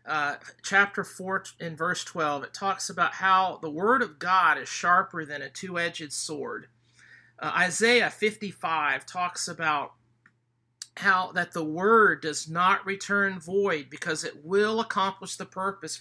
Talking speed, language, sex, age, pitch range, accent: 145 wpm, English, male, 50-69, 150-200 Hz, American